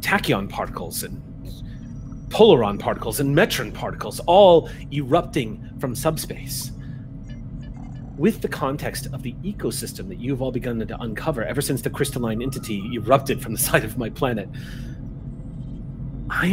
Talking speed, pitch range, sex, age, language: 135 wpm, 125-155 Hz, male, 30-49, English